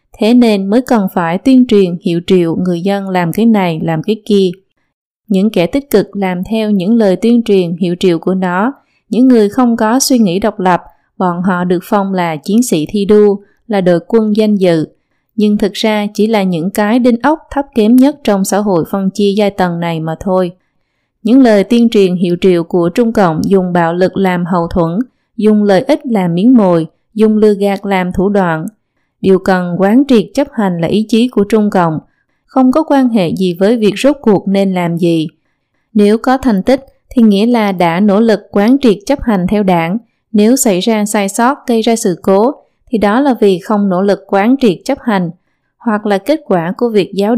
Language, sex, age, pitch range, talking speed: Vietnamese, female, 20-39, 185-230 Hz, 215 wpm